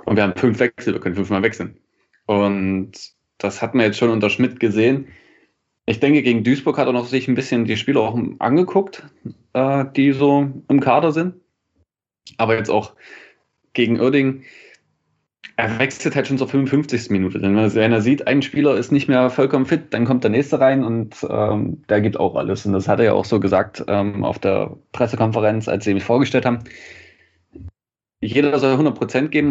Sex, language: male, German